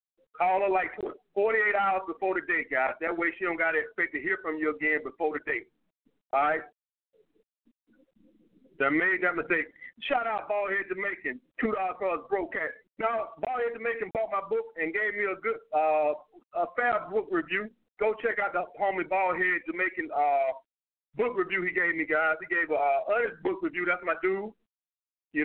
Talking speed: 190 wpm